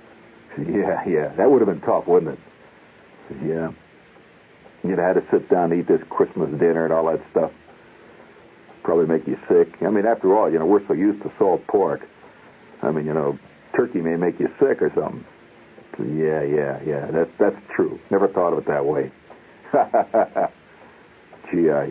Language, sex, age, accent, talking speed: English, male, 60-79, American, 185 wpm